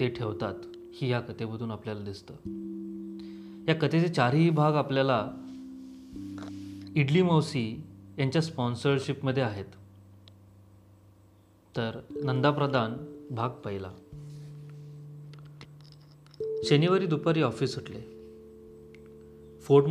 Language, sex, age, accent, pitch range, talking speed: Marathi, male, 30-49, native, 115-150 Hz, 65 wpm